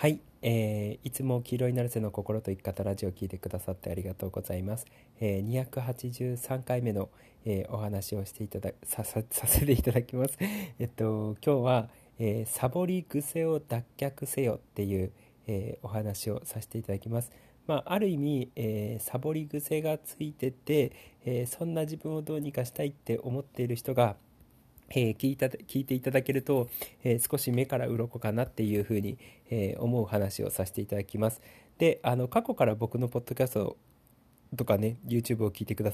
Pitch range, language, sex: 105-140 Hz, Japanese, male